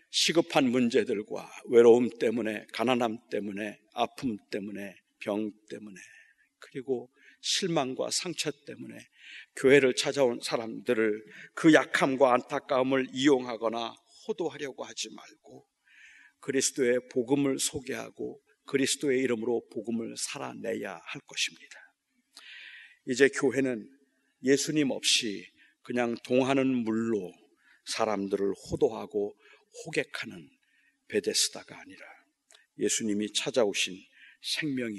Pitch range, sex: 110-135 Hz, male